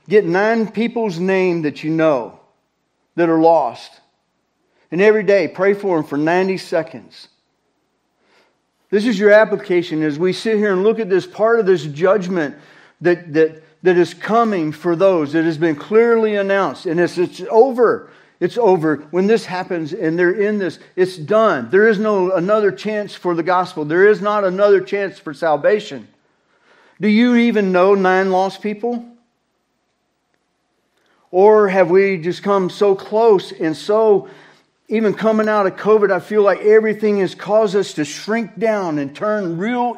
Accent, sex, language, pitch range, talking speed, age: American, male, English, 160-210 Hz, 165 wpm, 50-69